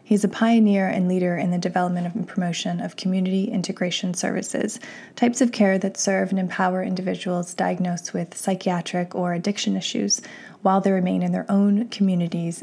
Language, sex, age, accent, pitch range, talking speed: English, female, 20-39, American, 175-205 Hz, 165 wpm